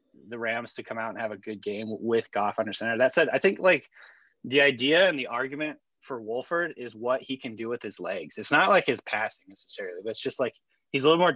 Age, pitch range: 20-39, 110-140 Hz